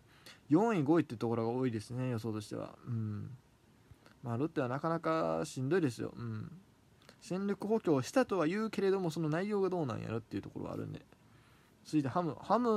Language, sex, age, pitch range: Japanese, male, 20-39, 115-165 Hz